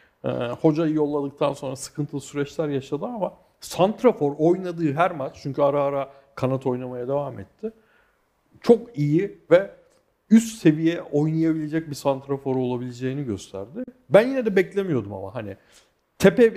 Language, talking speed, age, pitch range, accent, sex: Turkish, 130 wpm, 50-69, 130-175 Hz, native, male